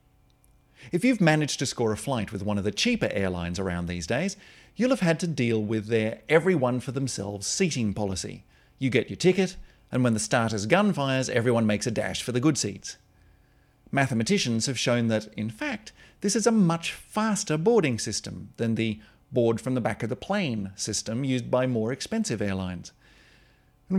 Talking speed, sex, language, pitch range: 175 wpm, male, English, 110-160 Hz